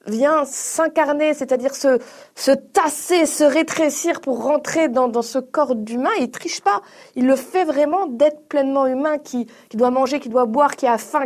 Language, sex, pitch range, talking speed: French, female, 240-300 Hz, 190 wpm